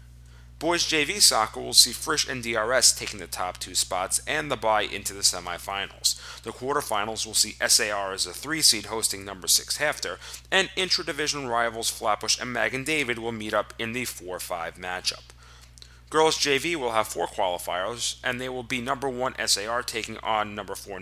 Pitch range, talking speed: 90-130 Hz, 180 wpm